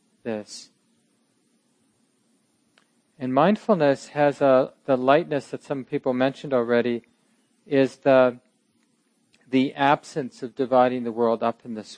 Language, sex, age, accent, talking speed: English, male, 40-59, American, 115 wpm